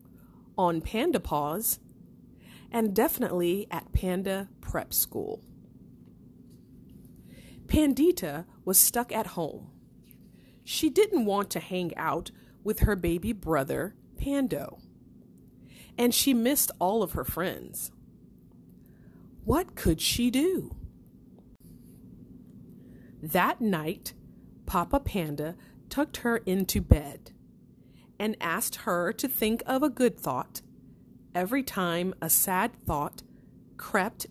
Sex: female